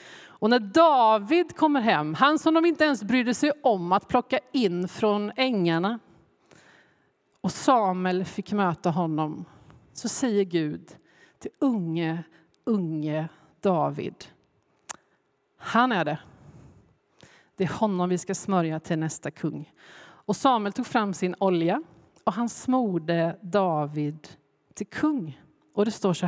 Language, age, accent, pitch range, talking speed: Swedish, 40-59, native, 165-220 Hz, 130 wpm